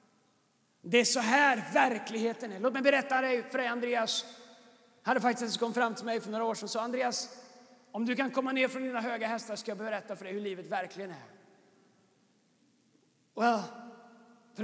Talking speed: 195 wpm